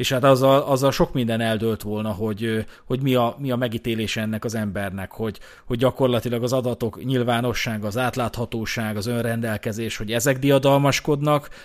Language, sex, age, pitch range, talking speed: Hungarian, male, 30-49, 110-130 Hz, 165 wpm